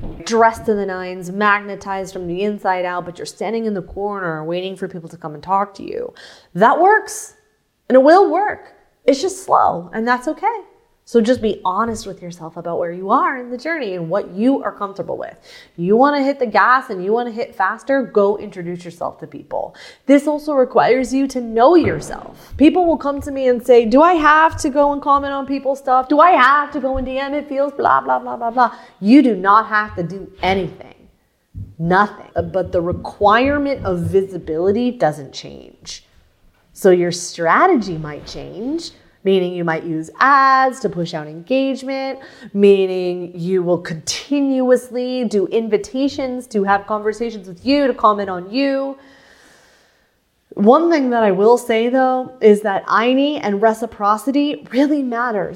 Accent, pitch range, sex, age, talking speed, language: American, 185-270 Hz, female, 30-49, 180 wpm, English